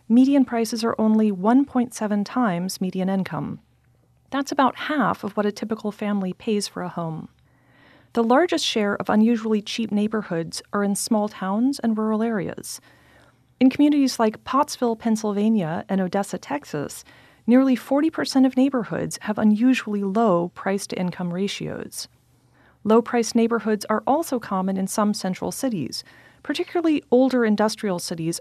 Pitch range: 190-250 Hz